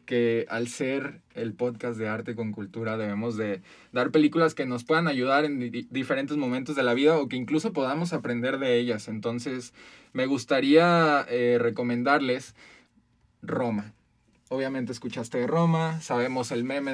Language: Spanish